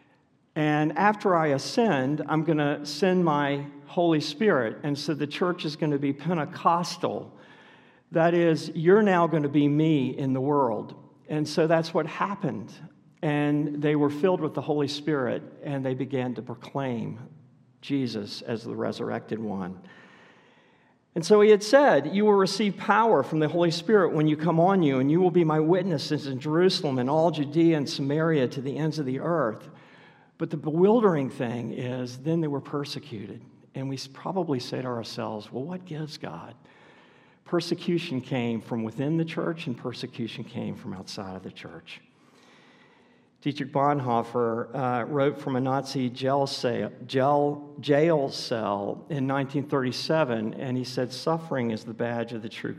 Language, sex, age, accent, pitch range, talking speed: English, male, 50-69, American, 125-165 Hz, 165 wpm